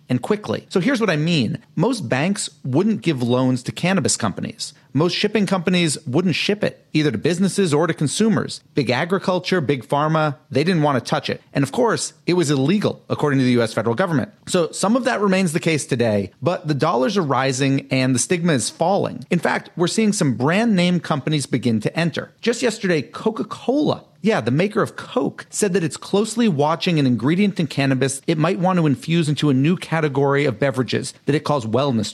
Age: 40-59